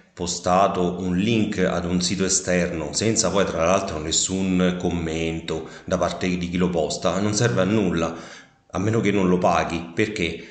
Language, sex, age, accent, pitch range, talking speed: Italian, male, 30-49, native, 90-110 Hz, 170 wpm